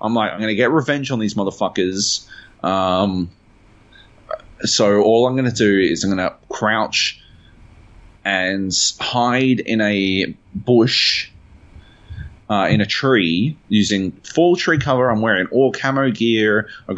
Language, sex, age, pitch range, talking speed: English, male, 30-49, 95-115 Hz, 145 wpm